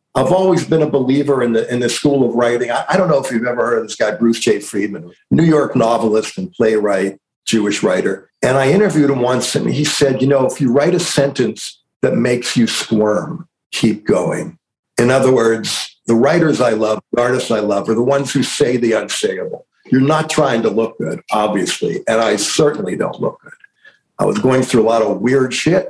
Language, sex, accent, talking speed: English, male, American, 220 wpm